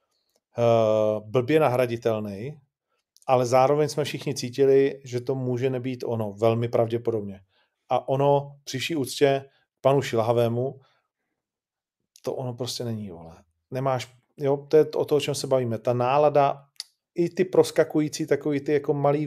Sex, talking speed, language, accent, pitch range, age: male, 135 wpm, Czech, native, 125-145 Hz, 40-59